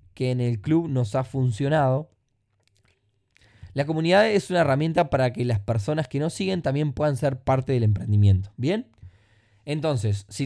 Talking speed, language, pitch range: 160 wpm, Spanish, 110-155 Hz